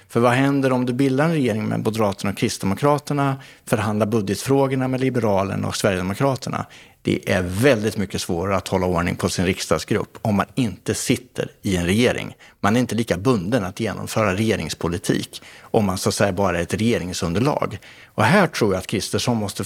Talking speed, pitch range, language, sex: 185 wpm, 95-125 Hz, Swedish, male